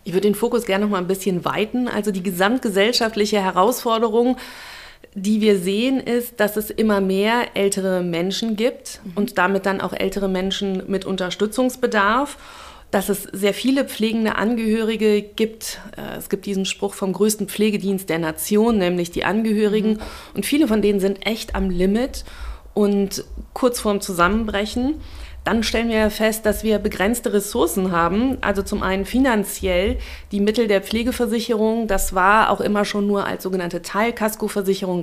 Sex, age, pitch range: female, 30-49, 195-225 Hz